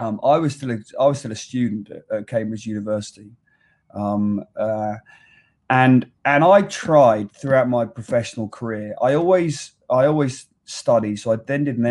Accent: British